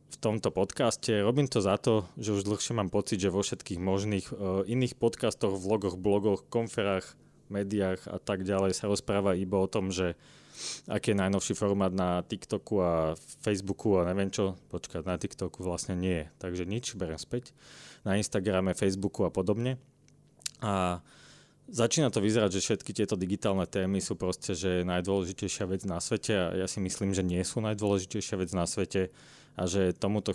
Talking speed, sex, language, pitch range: 170 wpm, male, English, 90-105 Hz